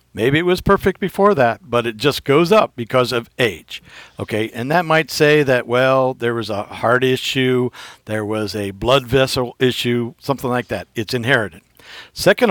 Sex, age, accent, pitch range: male, 60-79, American, 115-155 Hz